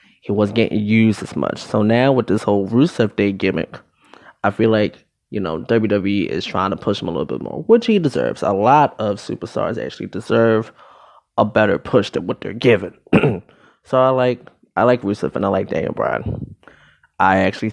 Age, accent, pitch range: 20-39, American, 100-120 Hz